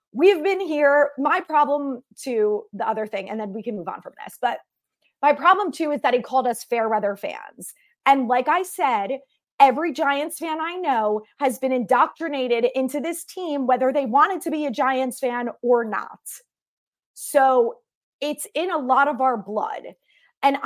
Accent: American